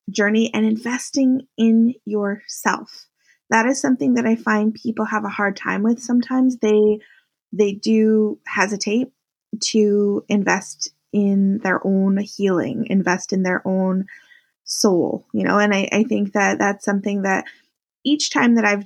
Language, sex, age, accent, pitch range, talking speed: English, female, 20-39, American, 195-235 Hz, 145 wpm